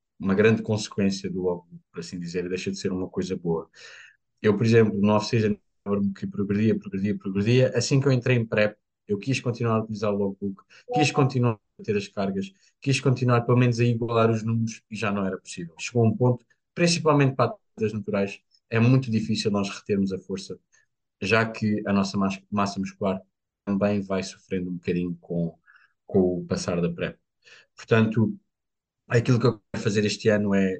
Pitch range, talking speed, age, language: 100-120 Hz, 185 wpm, 20-39, Portuguese